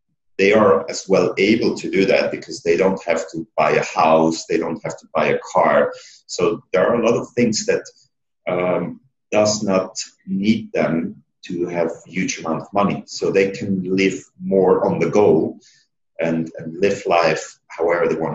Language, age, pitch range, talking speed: English, 40-59, 80-110 Hz, 190 wpm